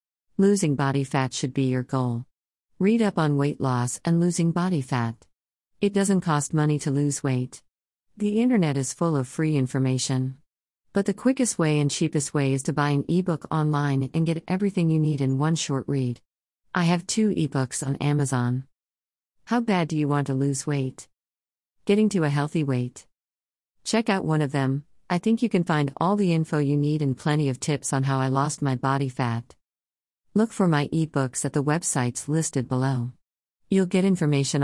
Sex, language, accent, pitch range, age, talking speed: female, English, American, 130-165 Hz, 50-69, 190 wpm